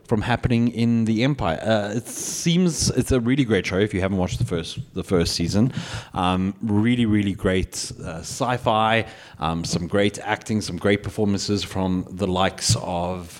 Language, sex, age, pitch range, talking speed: English, male, 30-49, 95-120 Hz, 175 wpm